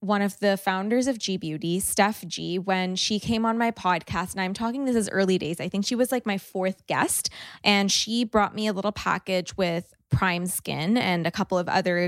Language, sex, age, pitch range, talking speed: English, female, 20-39, 180-215 Hz, 225 wpm